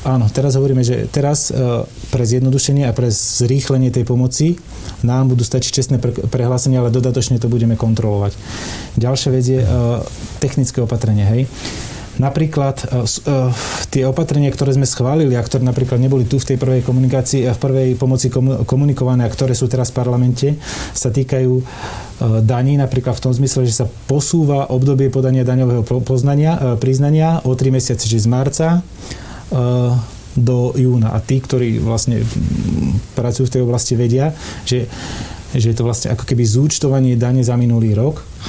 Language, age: Slovak, 30-49